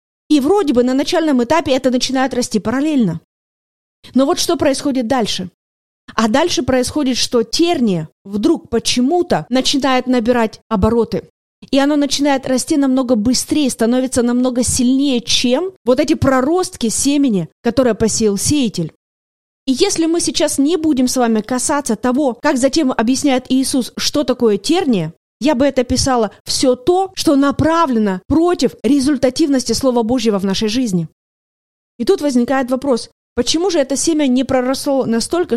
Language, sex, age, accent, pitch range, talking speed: Russian, female, 20-39, native, 230-285 Hz, 145 wpm